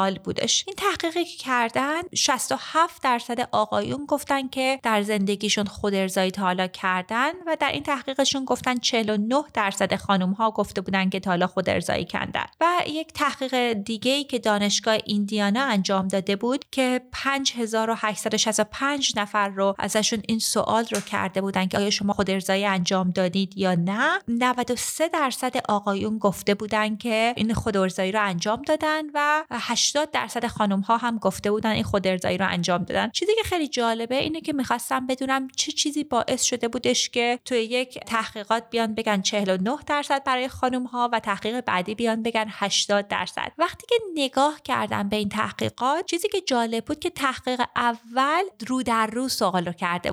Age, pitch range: 30-49, 205-265 Hz